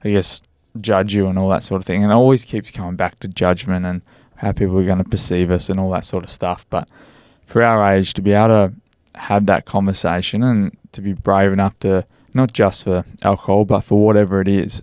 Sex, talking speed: male, 235 wpm